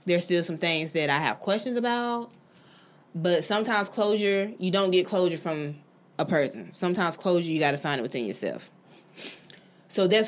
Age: 20-39